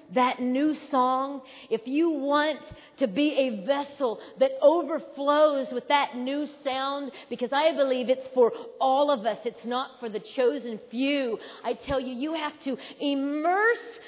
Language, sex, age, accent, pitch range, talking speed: English, female, 40-59, American, 265-360 Hz, 160 wpm